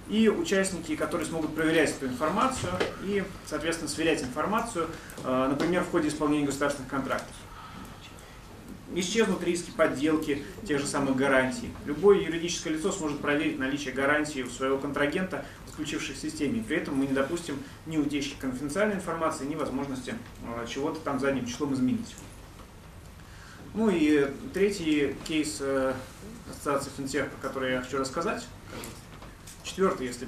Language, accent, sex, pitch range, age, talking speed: Russian, native, male, 130-155 Hz, 30-49, 125 wpm